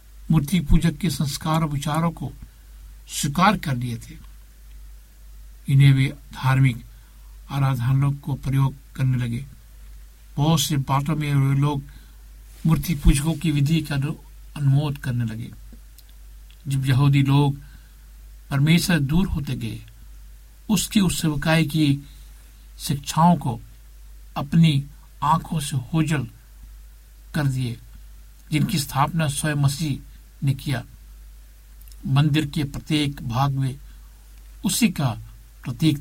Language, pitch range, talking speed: Hindi, 110-150 Hz, 105 wpm